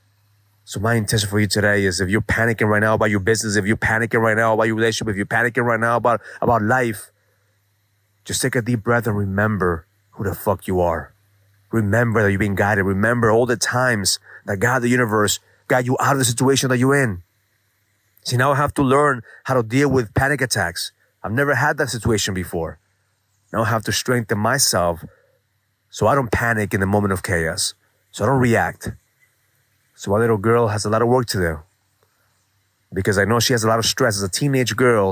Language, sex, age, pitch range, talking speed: English, male, 30-49, 100-120 Hz, 215 wpm